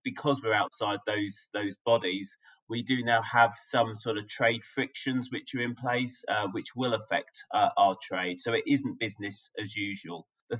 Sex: male